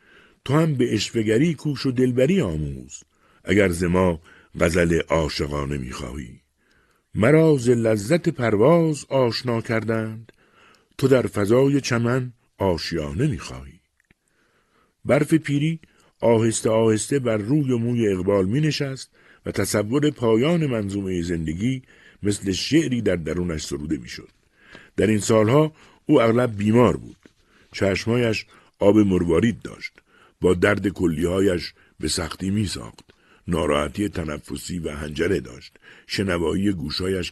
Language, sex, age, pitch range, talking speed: Persian, male, 60-79, 85-125 Hz, 115 wpm